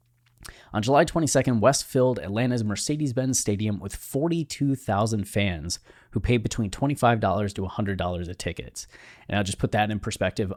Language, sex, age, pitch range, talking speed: English, male, 20-39, 95-120 Hz, 150 wpm